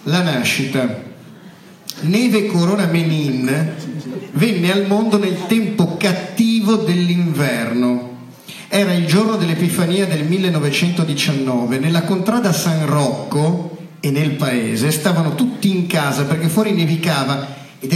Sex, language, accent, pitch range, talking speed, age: male, Italian, native, 145-195 Hz, 110 wpm, 50-69